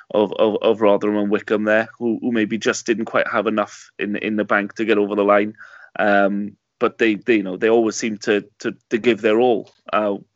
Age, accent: 20-39, British